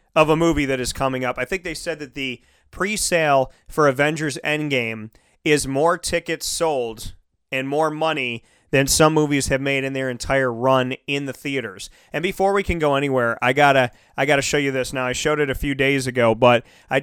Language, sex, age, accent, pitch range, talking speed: English, male, 30-49, American, 125-150 Hz, 210 wpm